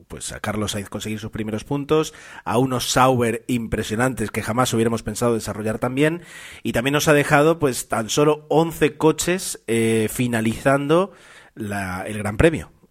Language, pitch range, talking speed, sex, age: Spanish, 110-140 Hz, 165 wpm, male, 30-49